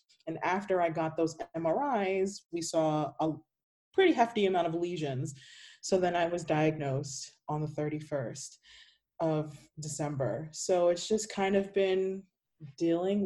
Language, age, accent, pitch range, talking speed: English, 20-39, American, 150-190 Hz, 140 wpm